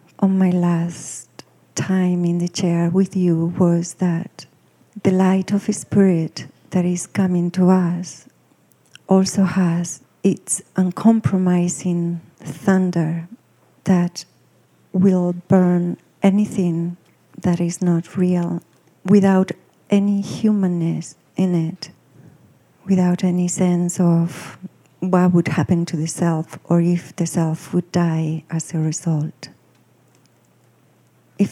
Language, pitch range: English, 170-195 Hz